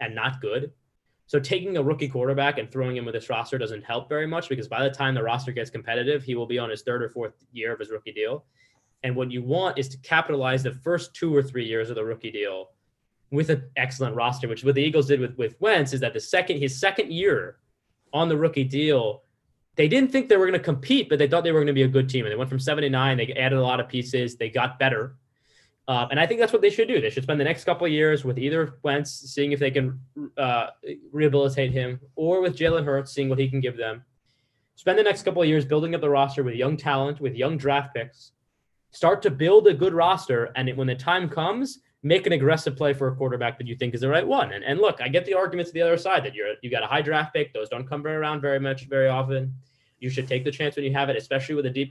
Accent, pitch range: American, 130-160 Hz